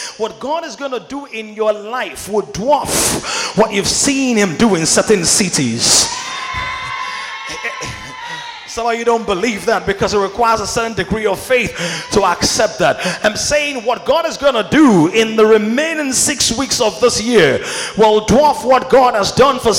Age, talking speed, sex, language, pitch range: 30-49, 180 wpm, male, English, 215-290 Hz